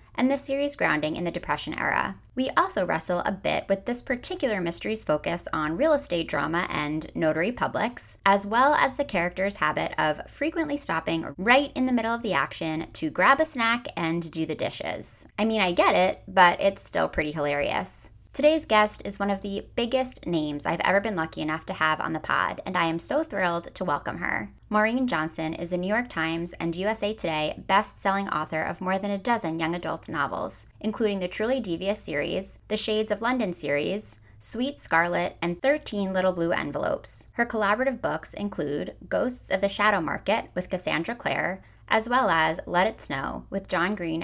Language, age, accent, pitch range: English, 20-39, American, 165-225 Hz